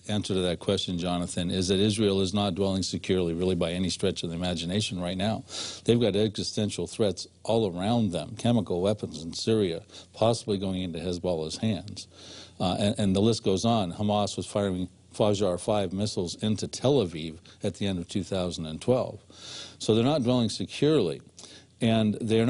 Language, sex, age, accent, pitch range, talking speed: English, male, 50-69, American, 95-115 Hz, 170 wpm